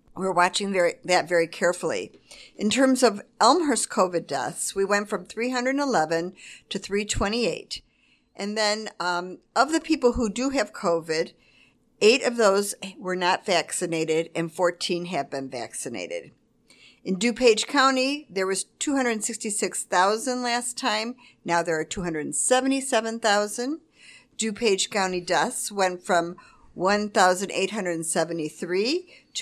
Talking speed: 120 wpm